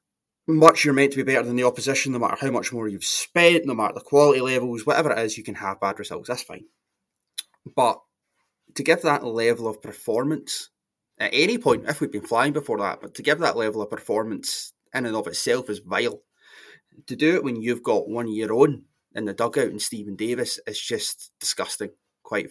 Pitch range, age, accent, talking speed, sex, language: 115-145 Hz, 20-39, British, 210 wpm, male, English